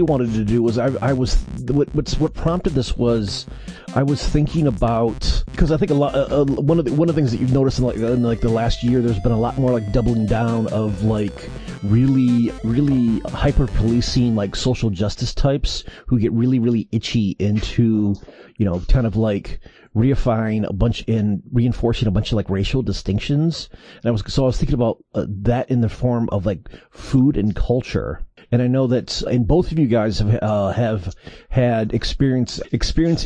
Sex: male